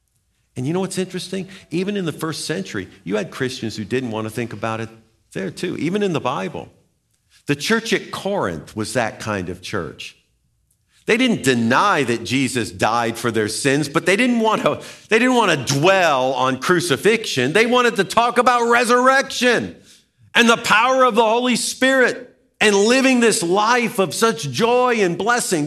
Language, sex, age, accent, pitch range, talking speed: English, male, 50-69, American, 130-205 Hz, 180 wpm